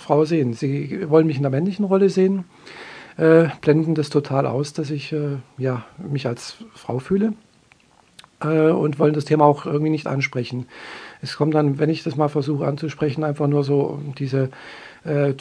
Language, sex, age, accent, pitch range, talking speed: German, male, 50-69, German, 140-160 Hz, 175 wpm